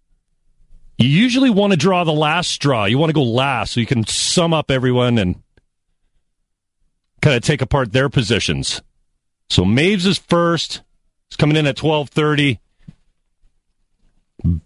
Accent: American